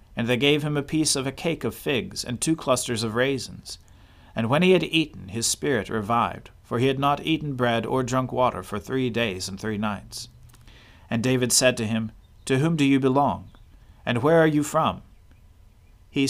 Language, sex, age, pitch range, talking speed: English, male, 40-59, 100-135 Hz, 205 wpm